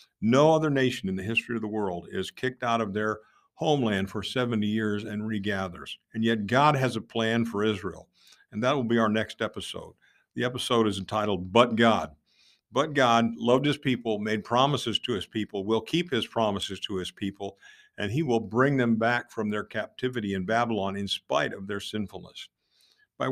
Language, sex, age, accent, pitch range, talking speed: English, male, 50-69, American, 100-125 Hz, 195 wpm